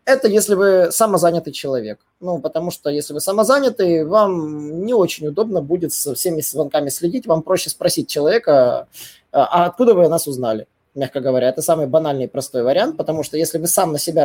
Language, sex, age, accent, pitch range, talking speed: Russian, male, 20-39, native, 155-200 Hz, 185 wpm